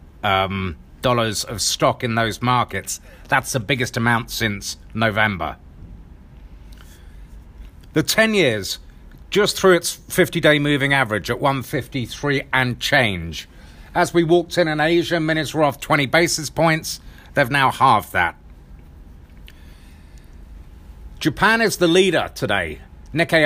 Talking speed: 125 wpm